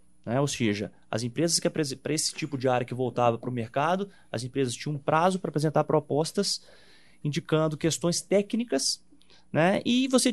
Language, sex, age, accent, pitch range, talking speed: Portuguese, male, 30-49, Brazilian, 125-180 Hz, 175 wpm